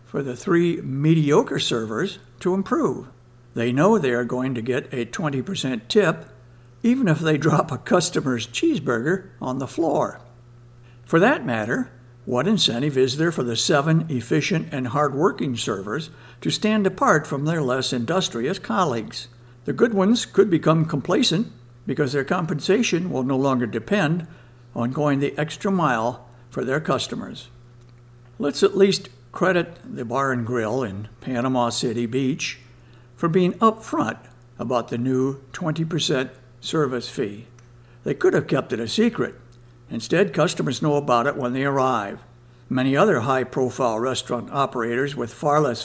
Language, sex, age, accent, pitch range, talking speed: English, male, 60-79, American, 120-160 Hz, 150 wpm